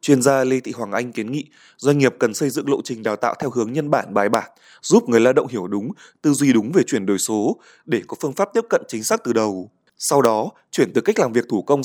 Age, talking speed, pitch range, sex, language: 20-39, 280 wpm, 115-150 Hz, male, Vietnamese